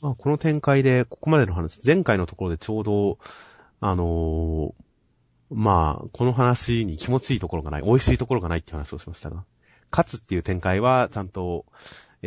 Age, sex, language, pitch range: 30-49, male, Japanese, 80-115 Hz